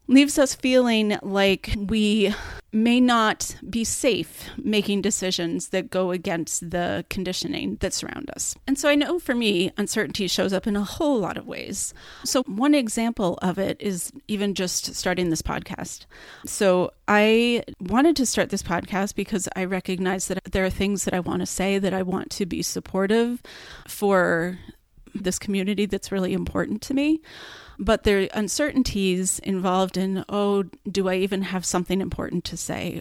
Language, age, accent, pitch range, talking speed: English, 30-49, American, 185-220 Hz, 170 wpm